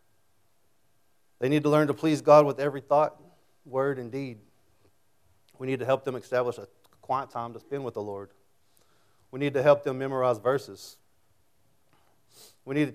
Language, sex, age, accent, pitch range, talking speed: English, male, 40-59, American, 115-140 Hz, 170 wpm